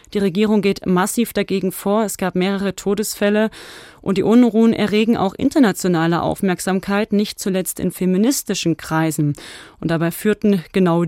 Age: 30-49